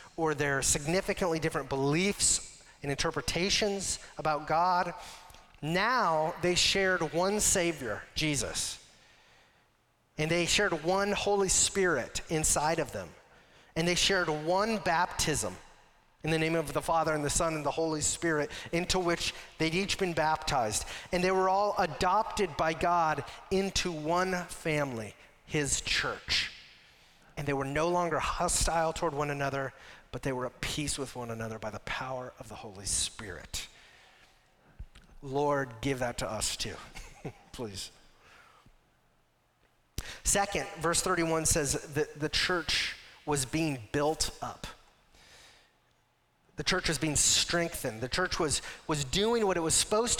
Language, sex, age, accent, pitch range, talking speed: English, male, 30-49, American, 140-185 Hz, 140 wpm